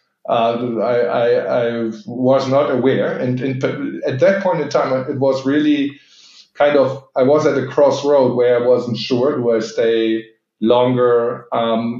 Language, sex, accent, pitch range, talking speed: English, male, German, 115-135 Hz, 160 wpm